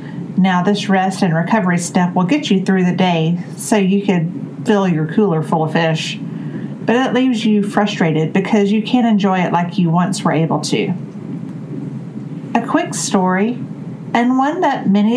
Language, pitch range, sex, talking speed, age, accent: English, 175-220 Hz, female, 175 wpm, 40-59, American